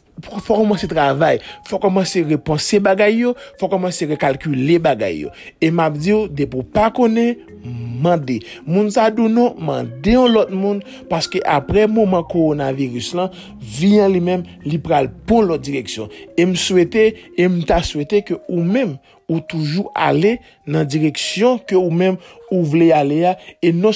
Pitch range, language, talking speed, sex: 155-205 Hz, French, 145 wpm, male